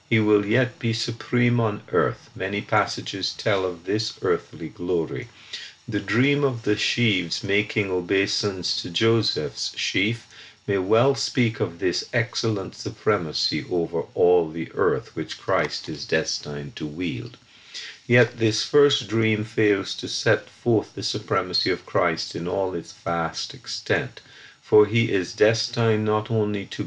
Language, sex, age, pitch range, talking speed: English, male, 50-69, 95-120 Hz, 145 wpm